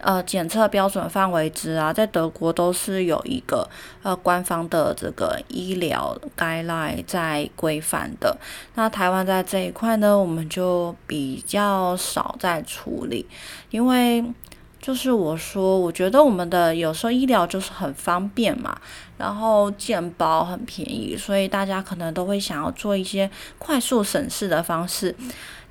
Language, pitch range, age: Chinese, 170-220 Hz, 20-39